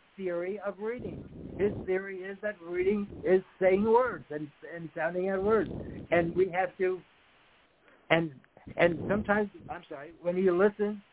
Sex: male